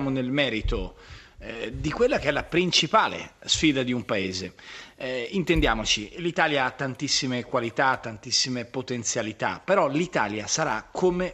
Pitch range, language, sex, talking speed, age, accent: 125-180 Hz, Italian, male, 130 wpm, 40-59, native